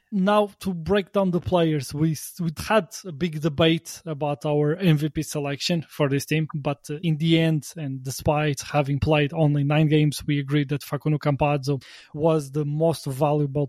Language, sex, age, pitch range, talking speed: English, male, 20-39, 140-160 Hz, 170 wpm